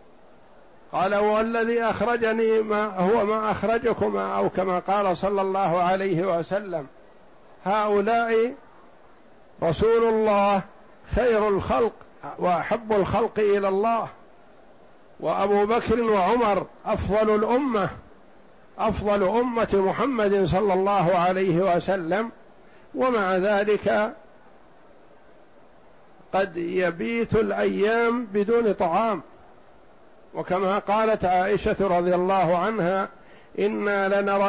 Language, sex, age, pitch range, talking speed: Arabic, male, 60-79, 185-215 Hz, 85 wpm